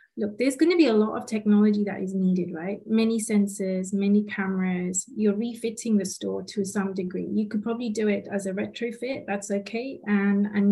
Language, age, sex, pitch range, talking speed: English, 30-49, female, 200-225 Hz, 200 wpm